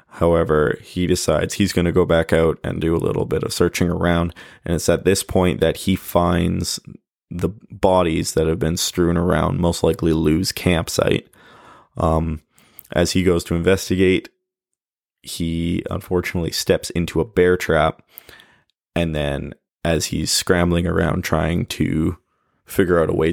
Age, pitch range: 20-39, 80-95 Hz